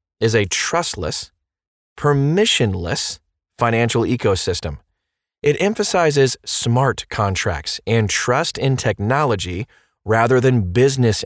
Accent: American